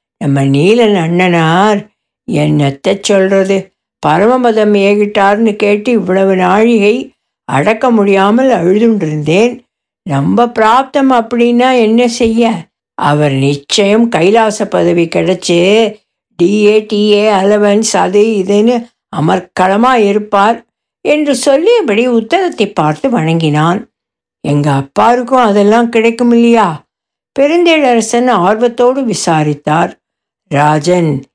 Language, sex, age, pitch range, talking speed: Tamil, female, 60-79, 190-235 Hz, 85 wpm